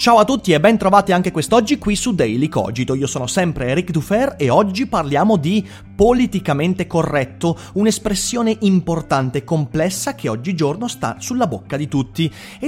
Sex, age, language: male, 30-49, Italian